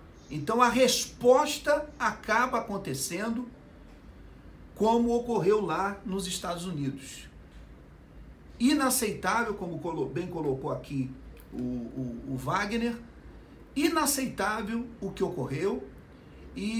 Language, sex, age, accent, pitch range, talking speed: Portuguese, male, 50-69, Brazilian, 145-230 Hz, 90 wpm